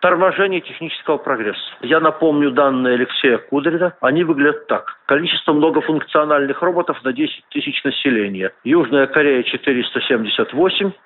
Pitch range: 135-170 Hz